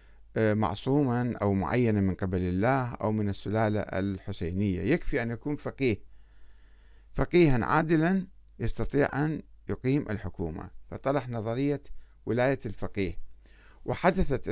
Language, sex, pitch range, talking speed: Arabic, male, 95-130 Hz, 105 wpm